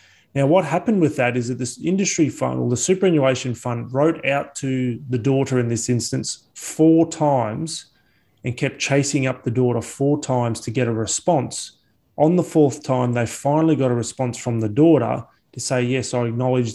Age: 30-49